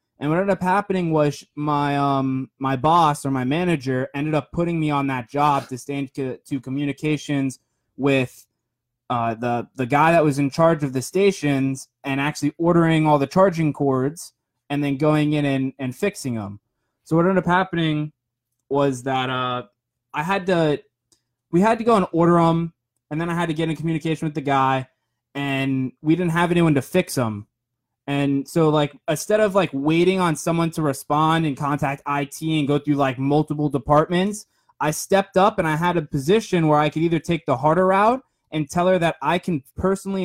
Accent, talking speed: American, 195 wpm